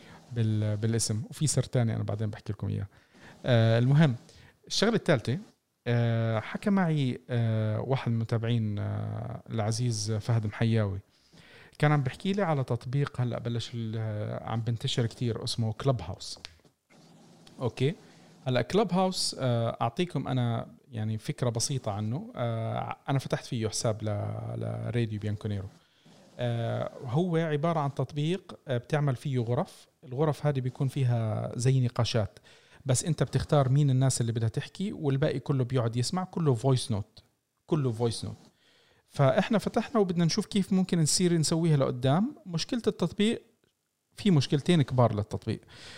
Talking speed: 135 wpm